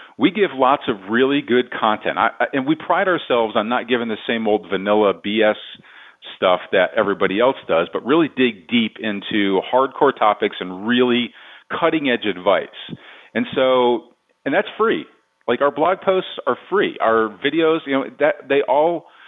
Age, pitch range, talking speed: 40-59, 110-140 Hz, 170 wpm